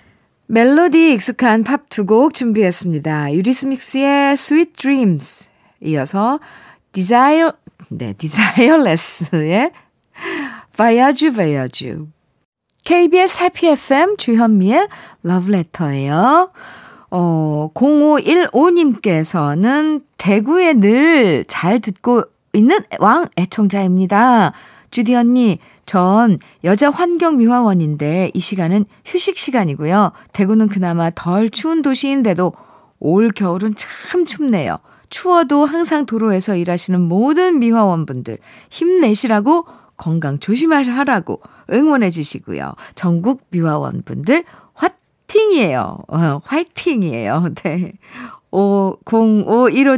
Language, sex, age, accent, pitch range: Korean, female, 50-69, native, 180-290 Hz